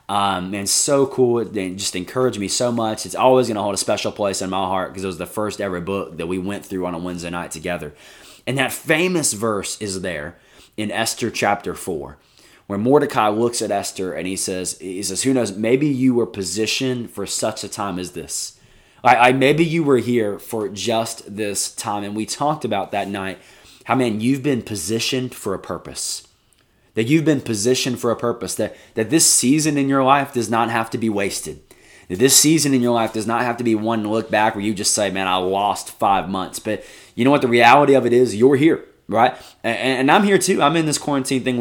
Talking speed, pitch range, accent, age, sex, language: 225 wpm, 100-130 Hz, American, 20-39, male, English